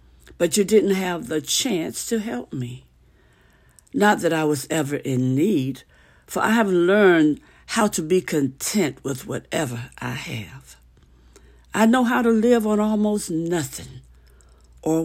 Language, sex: English, female